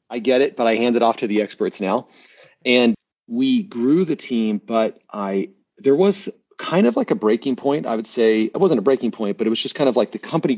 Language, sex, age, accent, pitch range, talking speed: English, male, 40-59, American, 105-130 Hz, 250 wpm